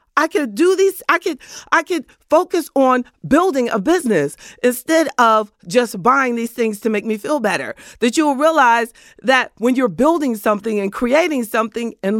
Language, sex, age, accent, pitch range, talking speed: English, female, 40-59, American, 195-275 Hz, 180 wpm